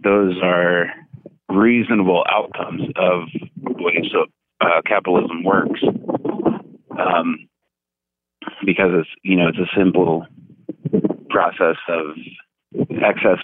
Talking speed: 95 wpm